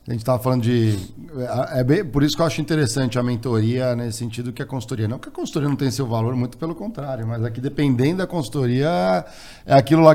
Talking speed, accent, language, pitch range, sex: 235 wpm, Brazilian, Portuguese, 120-150 Hz, male